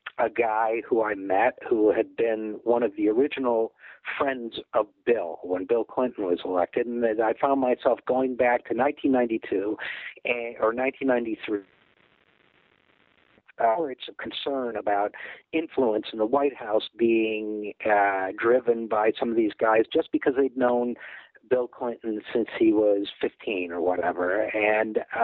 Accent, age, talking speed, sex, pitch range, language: American, 50-69, 145 wpm, male, 110-155 Hz, English